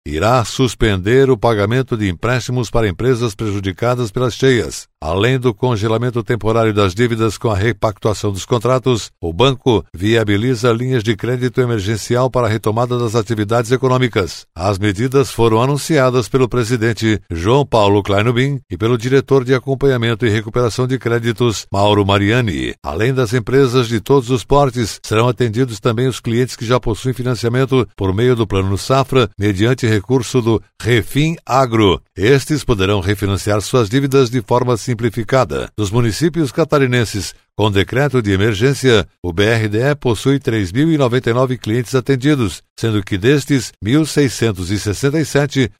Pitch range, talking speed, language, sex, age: 110-130 Hz, 140 wpm, Portuguese, male, 60-79